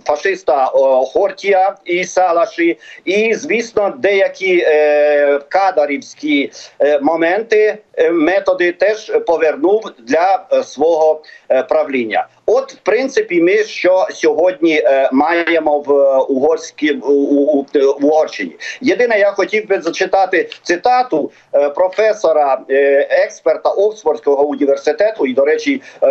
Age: 50-69